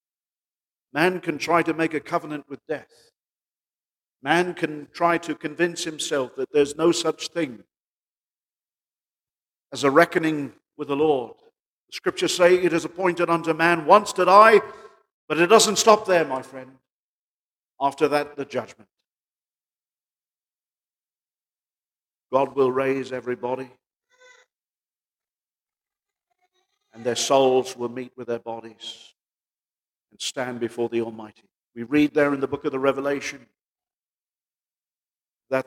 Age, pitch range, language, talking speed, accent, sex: 50-69, 140-180 Hz, English, 125 wpm, British, male